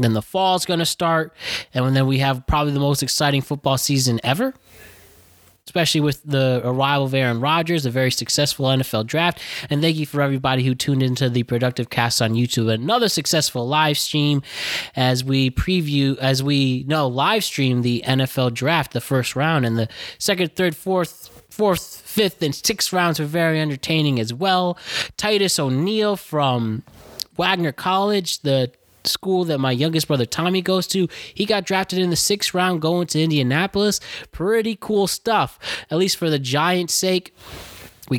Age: 20-39